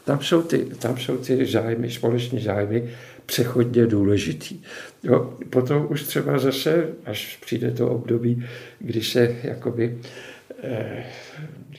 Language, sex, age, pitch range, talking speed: Czech, male, 60-79, 115-130 Hz, 120 wpm